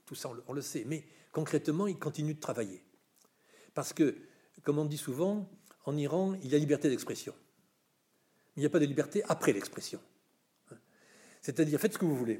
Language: French